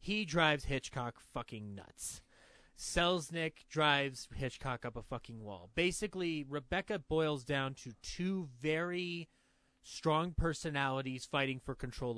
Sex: male